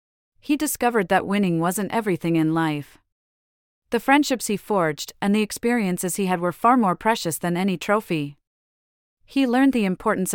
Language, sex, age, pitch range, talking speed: English, female, 30-49, 160-220 Hz, 160 wpm